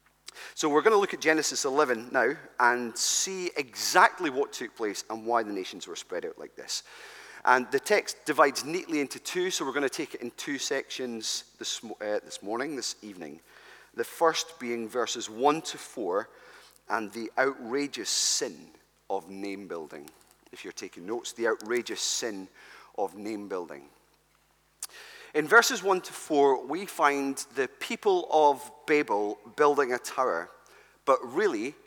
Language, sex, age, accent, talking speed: English, male, 30-49, British, 155 wpm